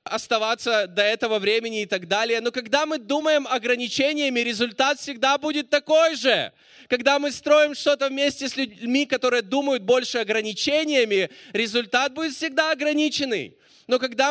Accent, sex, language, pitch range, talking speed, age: native, male, Russian, 195-260 Hz, 145 wpm, 20-39